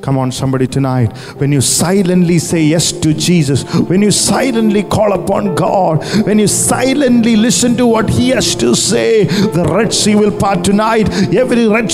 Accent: Indian